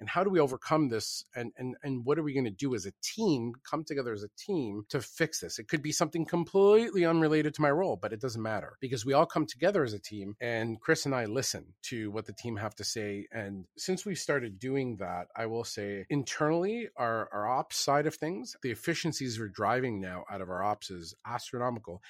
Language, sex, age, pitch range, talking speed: English, male, 40-59, 110-145 Hz, 230 wpm